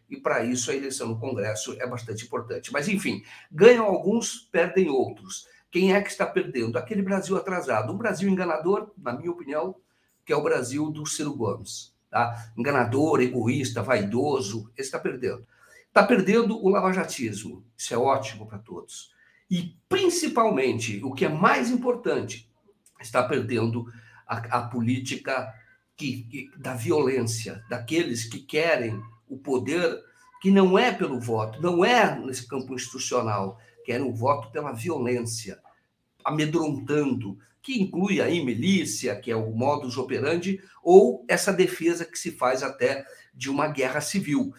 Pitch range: 120-195 Hz